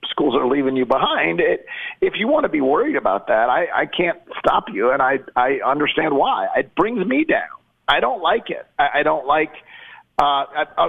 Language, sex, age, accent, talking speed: English, male, 50-69, American, 205 wpm